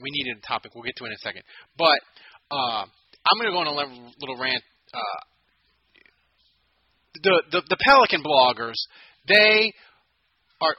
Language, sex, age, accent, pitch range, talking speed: English, male, 30-49, American, 140-210 Hz, 160 wpm